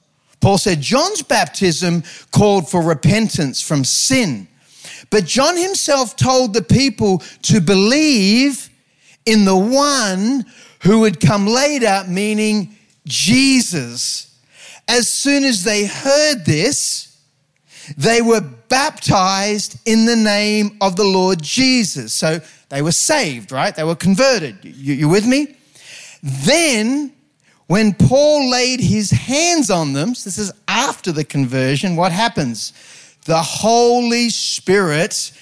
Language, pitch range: English, 150-215 Hz